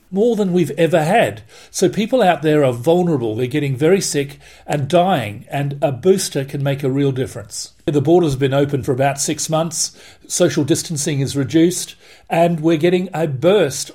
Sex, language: male, Finnish